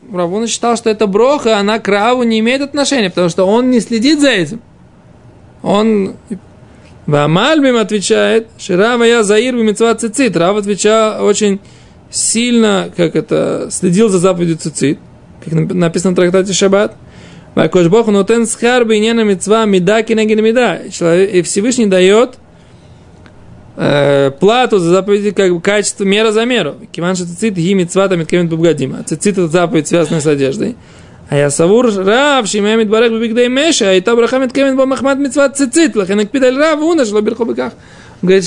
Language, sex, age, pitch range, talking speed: Russian, male, 20-39, 190-245 Hz, 95 wpm